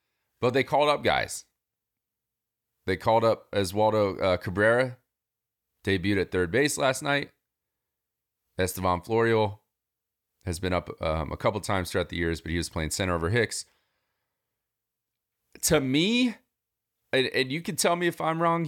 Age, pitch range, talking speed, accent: 30-49, 95-130 Hz, 155 wpm, American